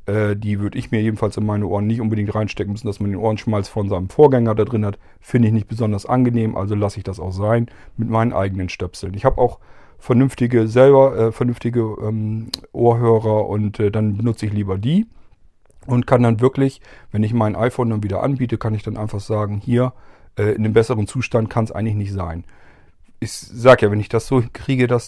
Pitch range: 105-125 Hz